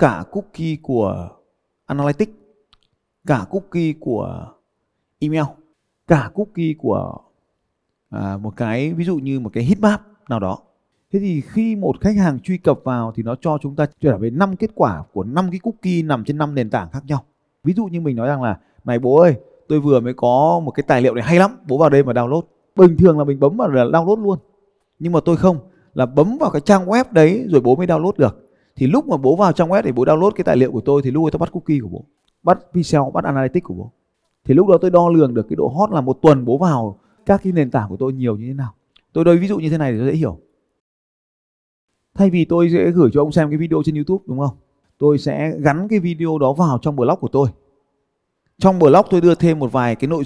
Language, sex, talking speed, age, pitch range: Vietnamese, male, 240 wpm, 20-39, 130-175 Hz